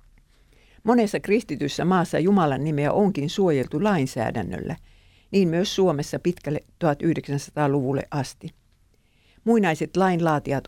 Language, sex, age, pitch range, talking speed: Finnish, female, 60-79, 140-185 Hz, 90 wpm